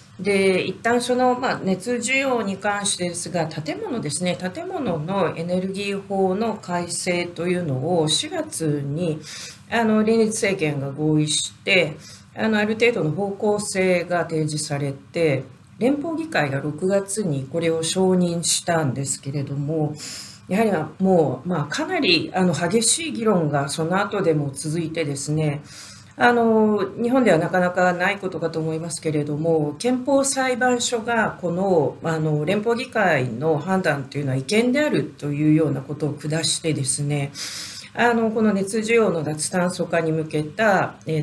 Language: Japanese